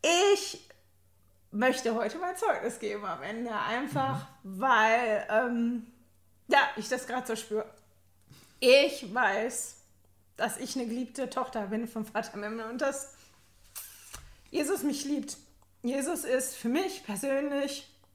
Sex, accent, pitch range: female, German, 215-275 Hz